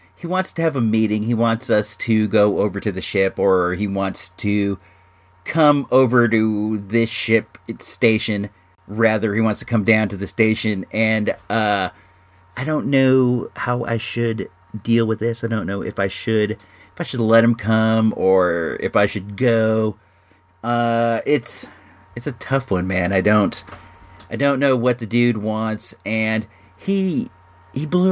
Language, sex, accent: English, male, American